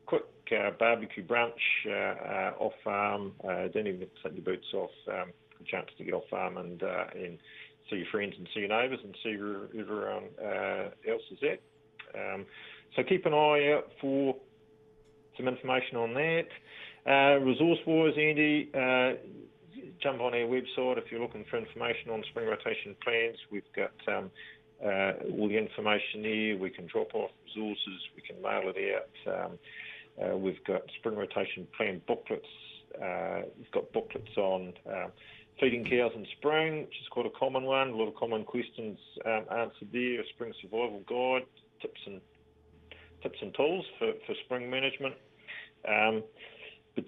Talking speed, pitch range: 170 wpm, 110-145 Hz